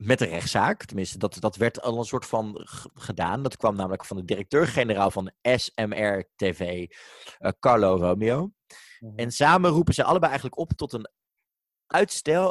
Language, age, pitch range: Dutch, 30-49, 105-130 Hz